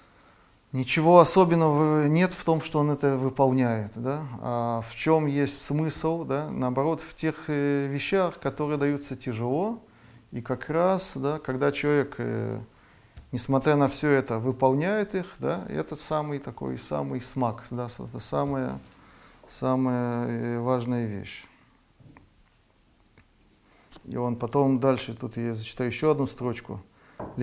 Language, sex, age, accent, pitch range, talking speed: Russian, male, 30-49, native, 120-155 Hz, 125 wpm